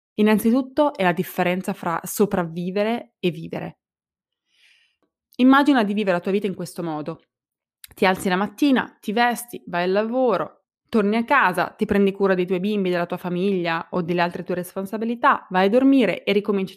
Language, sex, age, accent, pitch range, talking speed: Italian, female, 20-39, native, 175-215 Hz, 170 wpm